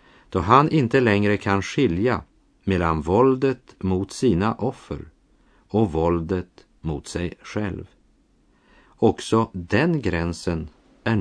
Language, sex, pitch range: Swedish, male, 90-120 Hz